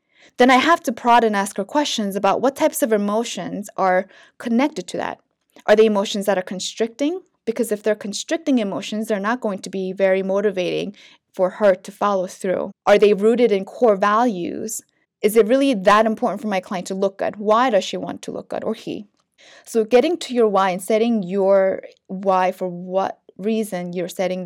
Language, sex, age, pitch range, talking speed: English, female, 20-39, 195-245 Hz, 200 wpm